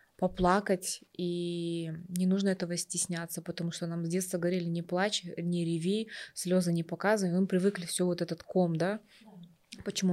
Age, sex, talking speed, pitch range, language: 20-39, female, 160 wpm, 175-220 Hz, Russian